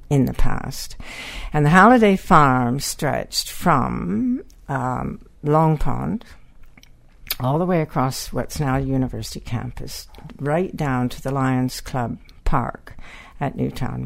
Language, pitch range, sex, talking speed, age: English, 120-155 Hz, female, 125 wpm, 60-79